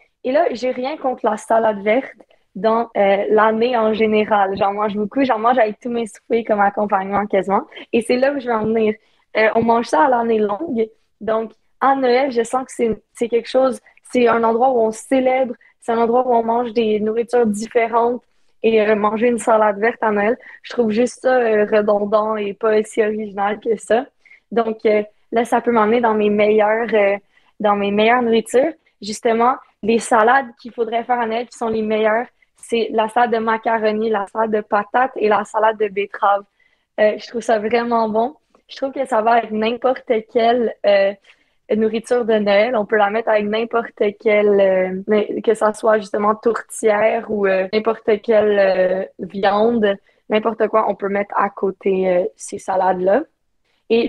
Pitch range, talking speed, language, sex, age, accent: 210-235 Hz, 190 wpm, French, female, 20-39, Canadian